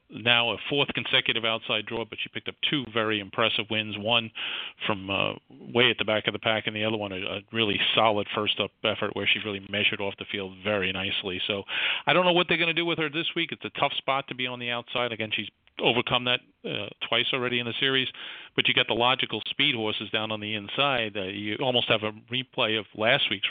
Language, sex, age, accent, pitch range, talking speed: English, male, 40-59, American, 105-130 Hz, 240 wpm